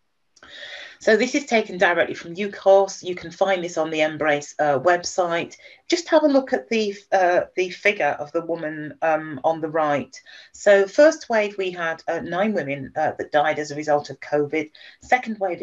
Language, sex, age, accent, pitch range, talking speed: English, female, 40-59, British, 150-190 Hz, 190 wpm